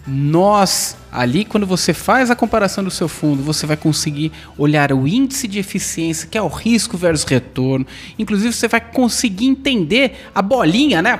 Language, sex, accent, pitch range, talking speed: Portuguese, male, Brazilian, 180-255 Hz, 175 wpm